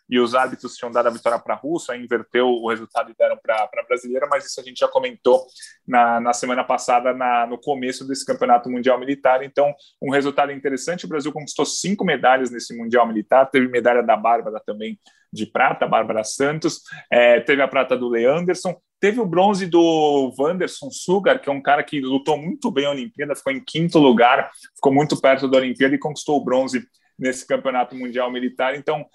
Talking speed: 200 wpm